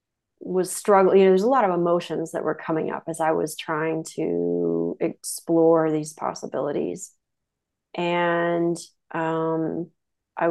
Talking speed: 135 wpm